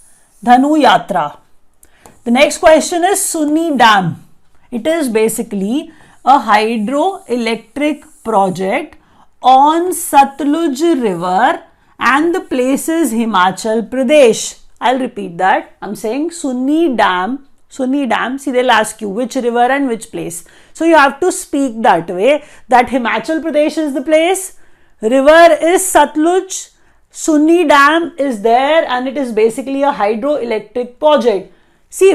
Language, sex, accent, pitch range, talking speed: English, female, Indian, 245-310 Hz, 135 wpm